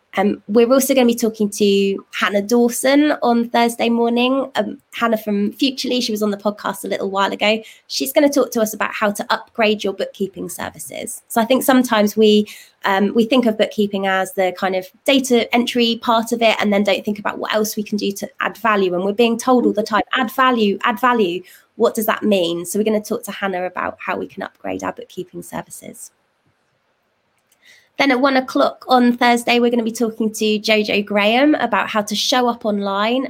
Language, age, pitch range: English, 20-39, 200-240 Hz